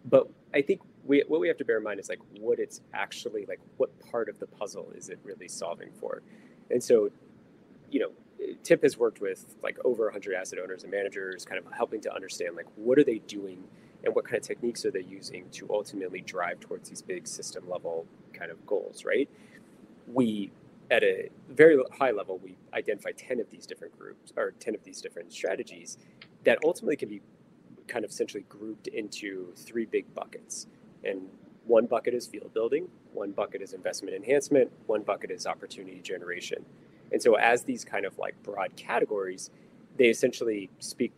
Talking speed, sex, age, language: 190 wpm, male, 30-49, English